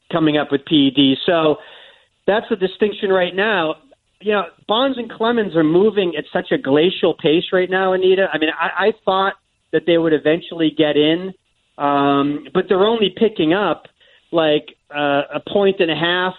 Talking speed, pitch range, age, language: 180 wpm, 145-185 Hz, 40-59, English